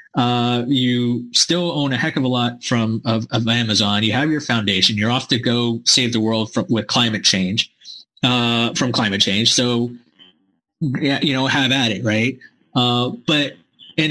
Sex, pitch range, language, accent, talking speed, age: male, 115-140 Hz, English, American, 185 wpm, 20-39